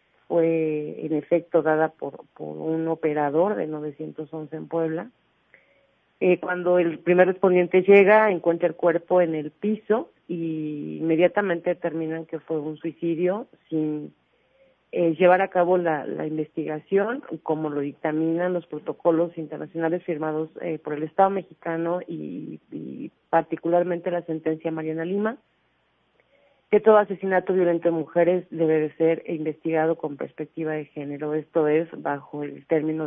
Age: 40-59